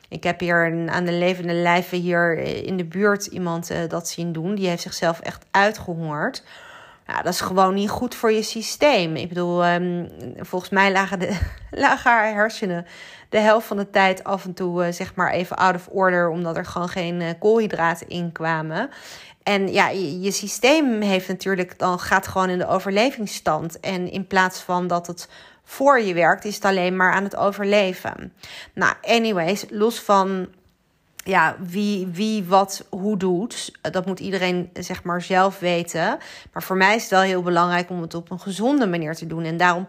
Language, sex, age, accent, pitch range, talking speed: Dutch, female, 30-49, Dutch, 175-205 Hz, 195 wpm